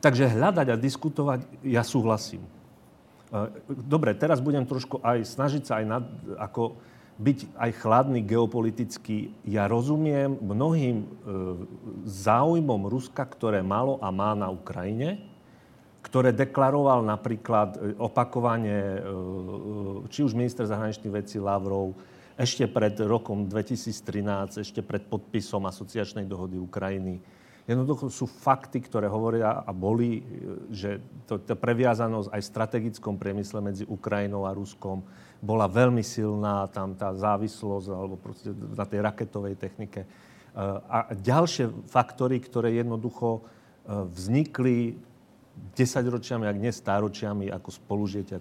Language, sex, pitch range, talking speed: Slovak, male, 100-125 Hz, 115 wpm